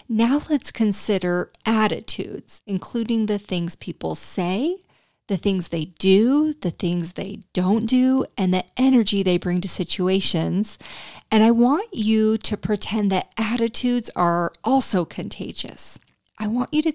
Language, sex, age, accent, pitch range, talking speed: English, female, 40-59, American, 185-235 Hz, 140 wpm